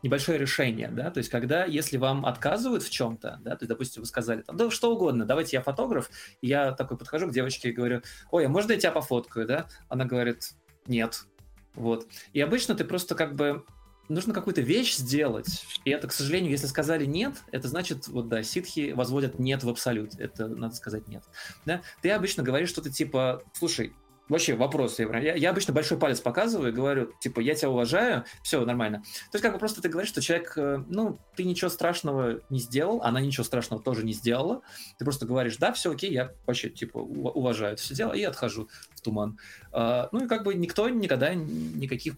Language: Russian